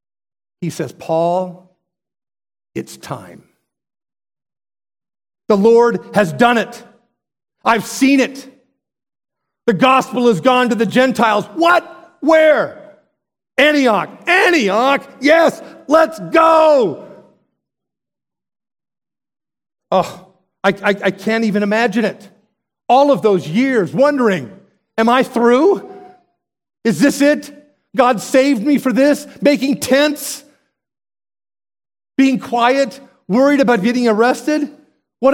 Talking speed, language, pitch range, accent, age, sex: 100 wpm, English, 180-260 Hz, American, 50-69, male